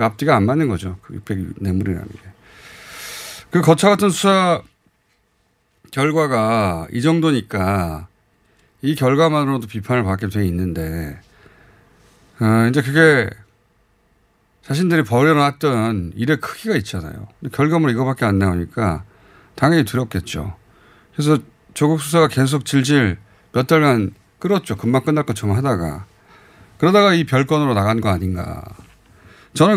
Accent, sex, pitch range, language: native, male, 100-155 Hz, Korean